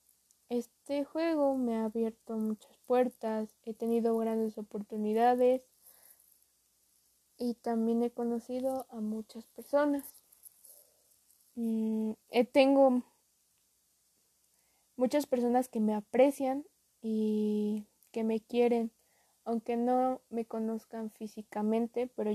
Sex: female